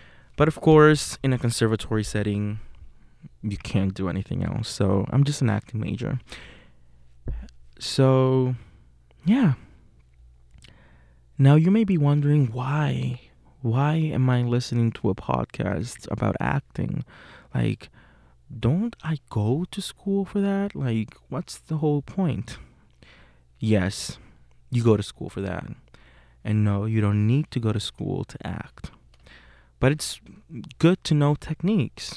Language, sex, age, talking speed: English, male, 20-39, 135 wpm